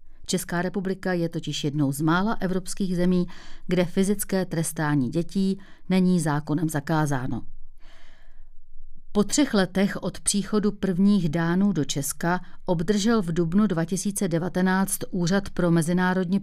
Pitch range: 170-200 Hz